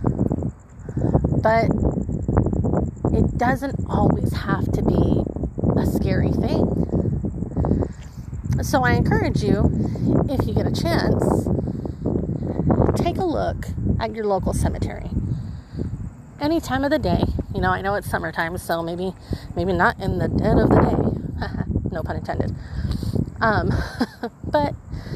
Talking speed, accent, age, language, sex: 125 wpm, American, 30-49, English, female